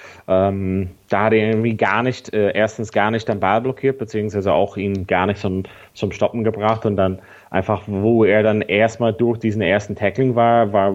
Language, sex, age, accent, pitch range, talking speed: German, male, 30-49, German, 95-110 Hz, 195 wpm